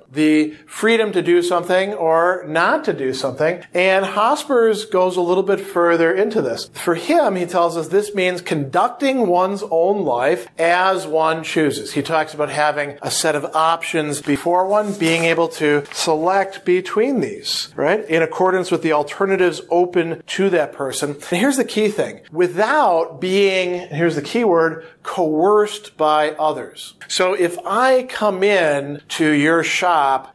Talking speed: 160 wpm